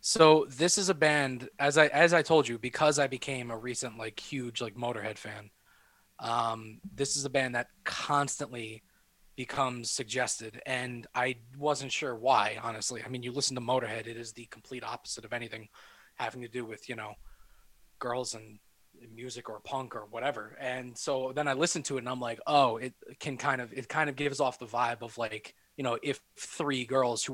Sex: male